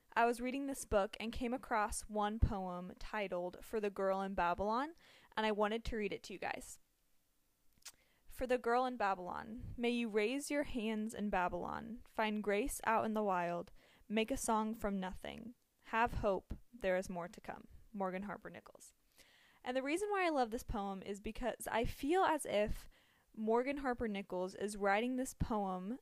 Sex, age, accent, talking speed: female, 10-29, American, 180 wpm